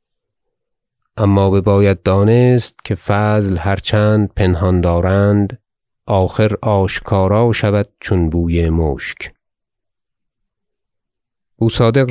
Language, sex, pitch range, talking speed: Persian, male, 95-110 Hz, 80 wpm